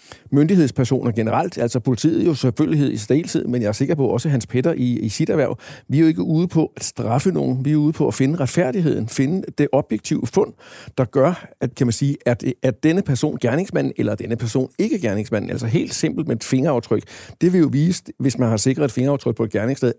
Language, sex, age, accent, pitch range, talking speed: Danish, male, 60-79, native, 115-145 Hz, 230 wpm